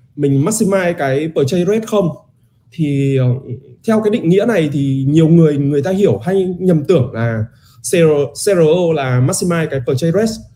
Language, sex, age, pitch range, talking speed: Vietnamese, male, 20-39, 125-175 Hz, 165 wpm